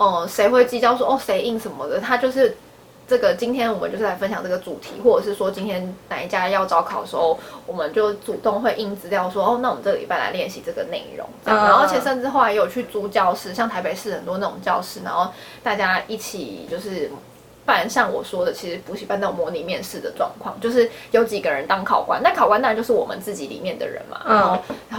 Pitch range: 200-270 Hz